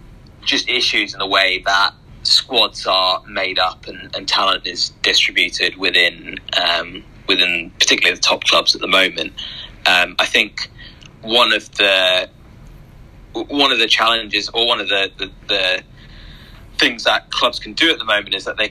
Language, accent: English, British